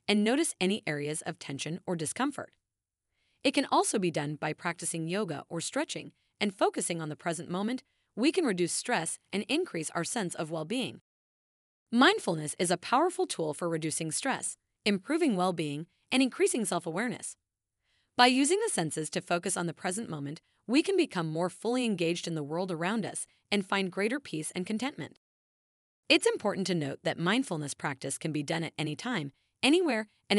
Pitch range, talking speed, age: 160-240 Hz, 175 wpm, 30-49